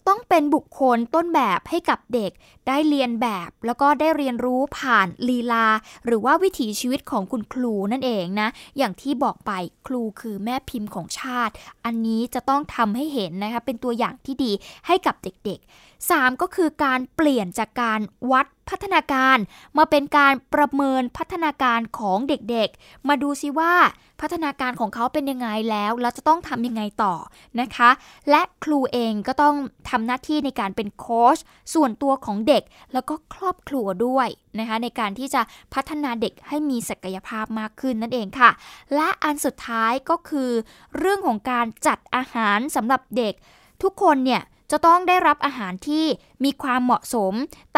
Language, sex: Thai, female